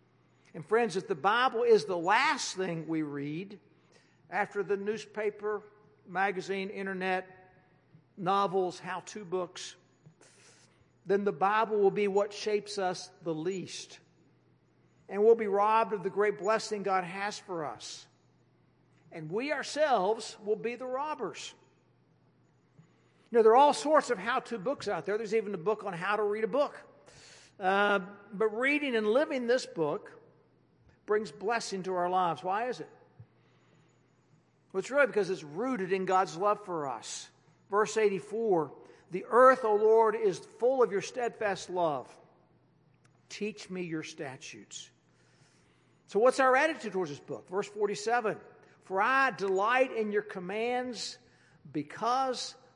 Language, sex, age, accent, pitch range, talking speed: English, male, 60-79, American, 185-230 Hz, 145 wpm